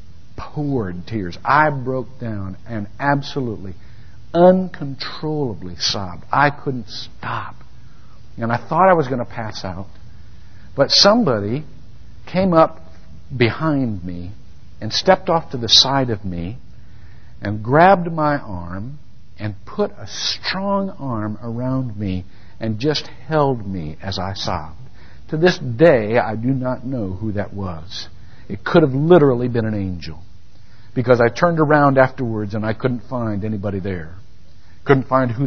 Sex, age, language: male, 60-79, English